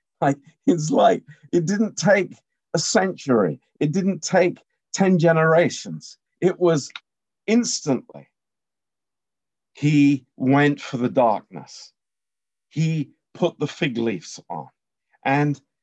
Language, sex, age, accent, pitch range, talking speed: Romanian, male, 50-69, British, 125-175 Hz, 110 wpm